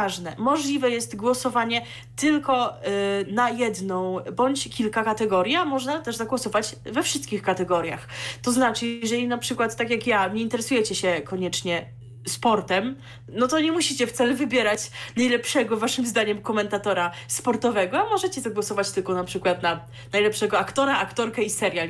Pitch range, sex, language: 195-245 Hz, female, Polish